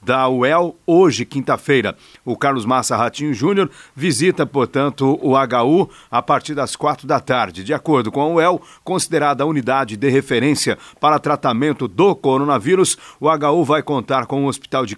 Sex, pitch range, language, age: male, 135-155 Hz, Portuguese, 50-69